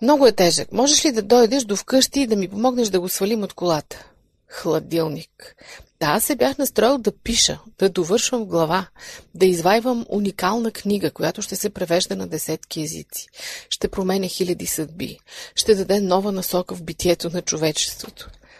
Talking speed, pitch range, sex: 170 wpm, 175-245 Hz, female